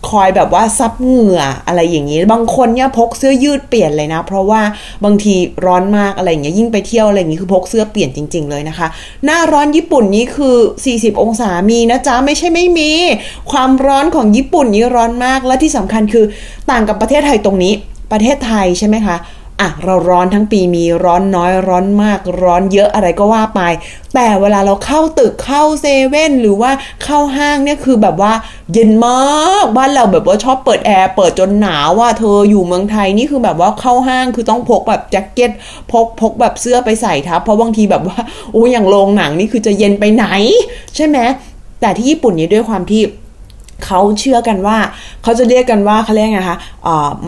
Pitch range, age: 190-255 Hz, 20-39